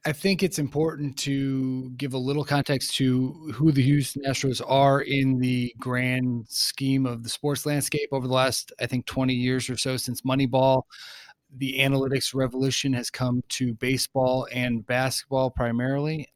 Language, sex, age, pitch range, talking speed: English, male, 30-49, 125-135 Hz, 160 wpm